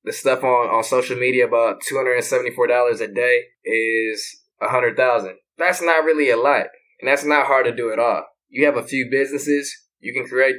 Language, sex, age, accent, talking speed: English, male, 20-39, American, 185 wpm